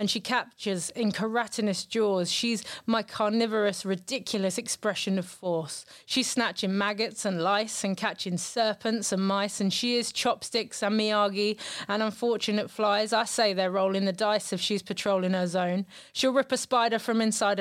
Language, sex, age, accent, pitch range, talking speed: English, female, 30-49, British, 195-245 Hz, 165 wpm